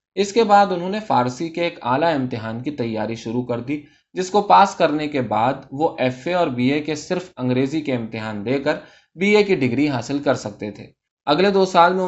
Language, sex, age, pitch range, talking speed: Urdu, male, 20-39, 120-165 Hz, 230 wpm